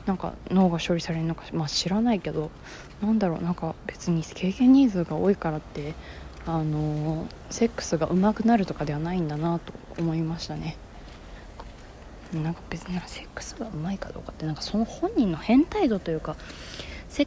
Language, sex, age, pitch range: Japanese, female, 20-39, 155-200 Hz